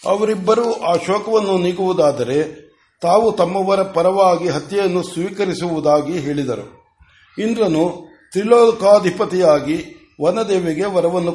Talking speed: 75 wpm